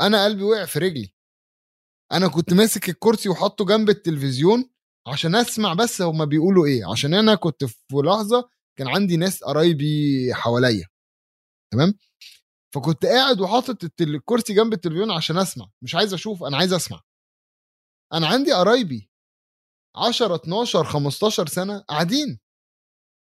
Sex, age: male, 20-39